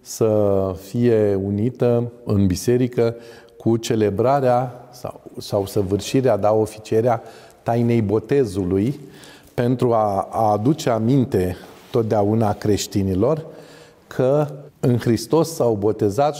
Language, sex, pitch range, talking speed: Romanian, male, 110-140 Hz, 95 wpm